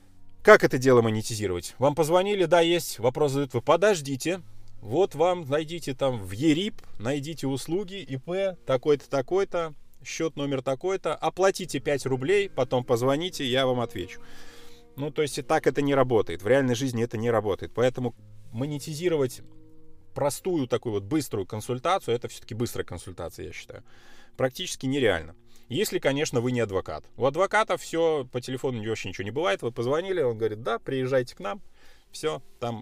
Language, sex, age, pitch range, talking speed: Russian, male, 20-39, 115-160 Hz, 160 wpm